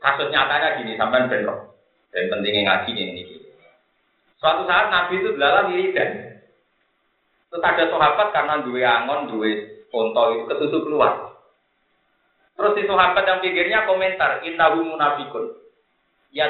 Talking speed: 125 wpm